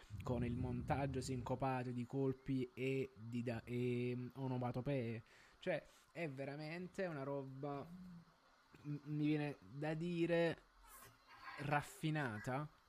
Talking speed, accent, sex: 100 wpm, native, male